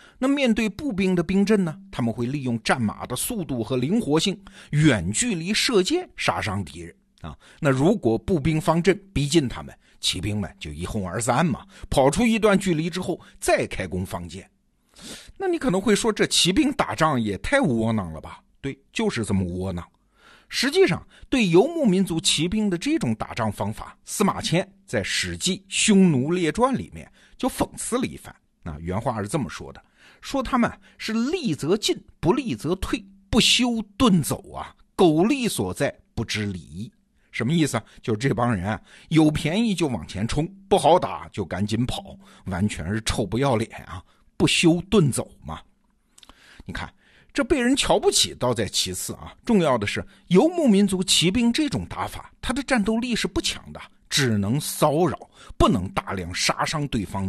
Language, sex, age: Chinese, male, 50-69